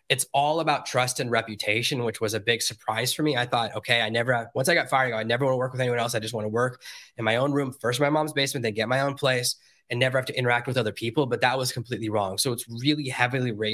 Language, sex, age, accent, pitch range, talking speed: English, male, 20-39, American, 115-145 Hz, 290 wpm